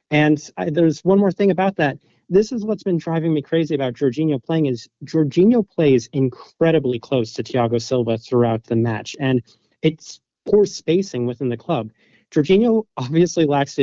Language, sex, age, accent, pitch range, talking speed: English, male, 30-49, American, 120-155 Hz, 175 wpm